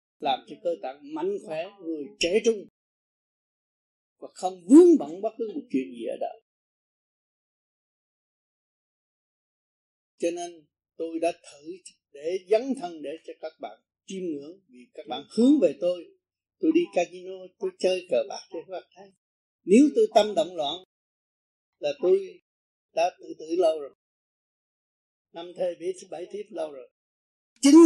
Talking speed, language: 145 wpm, Vietnamese